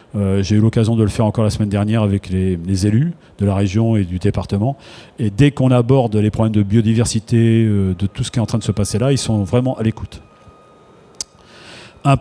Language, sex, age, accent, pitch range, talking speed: French, male, 40-59, French, 100-120 Hz, 230 wpm